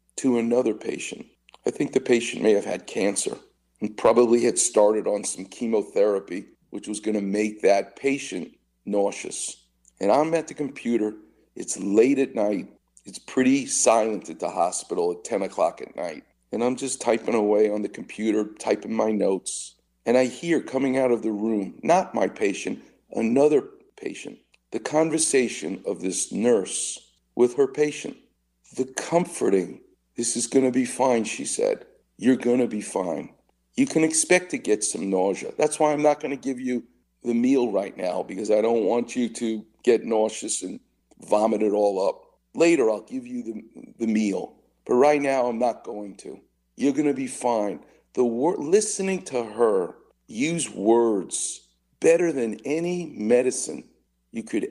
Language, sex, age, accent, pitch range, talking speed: English, male, 50-69, American, 105-155 Hz, 170 wpm